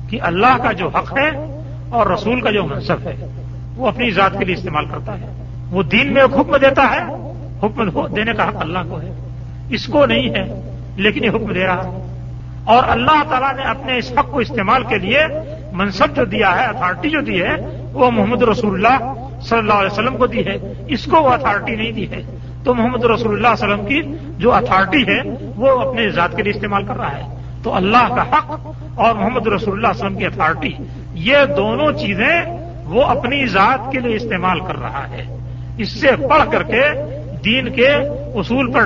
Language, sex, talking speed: Urdu, male, 205 wpm